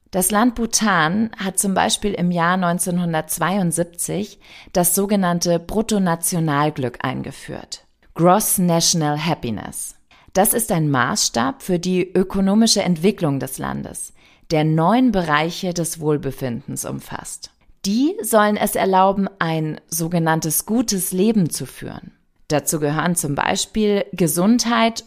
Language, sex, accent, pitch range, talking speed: German, female, German, 155-205 Hz, 110 wpm